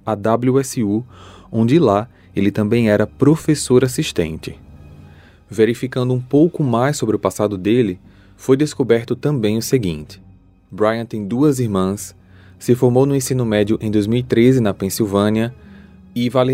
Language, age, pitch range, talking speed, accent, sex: Portuguese, 20-39, 100-125 Hz, 135 wpm, Brazilian, male